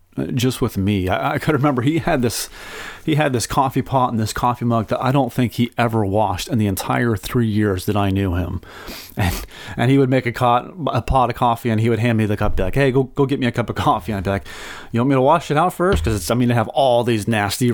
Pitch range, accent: 100-130 Hz, American